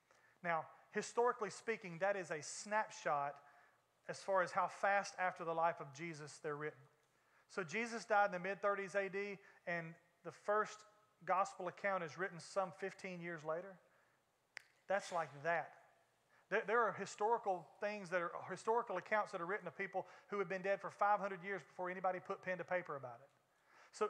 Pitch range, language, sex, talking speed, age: 170-200 Hz, English, male, 170 wpm, 30-49